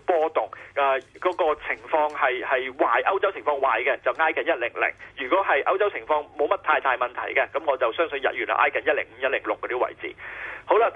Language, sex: Chinese, male